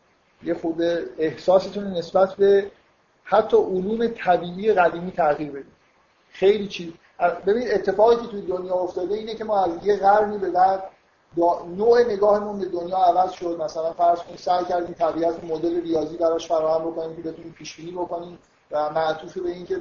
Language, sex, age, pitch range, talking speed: Persian, male, 50-69, 160-185 Hz, 165 wpm